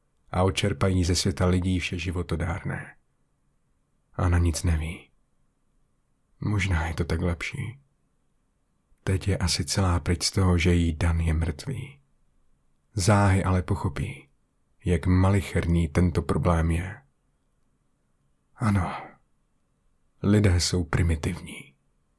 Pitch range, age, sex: 85-110 Hz, 30-49, male